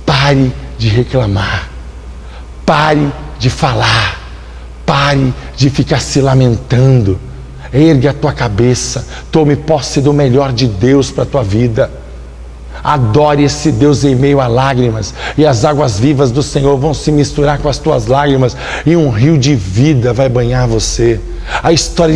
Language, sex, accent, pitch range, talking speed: Portuguese, male, Brazilian, 95-145 Hz, 145 wpm